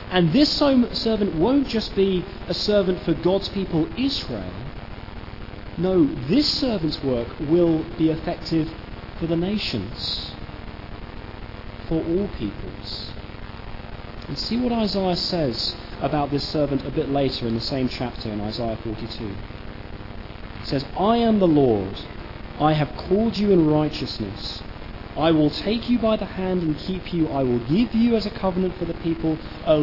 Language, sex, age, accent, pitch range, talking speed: English, male, 40-59, British, 115-185 Hz, 155 wpm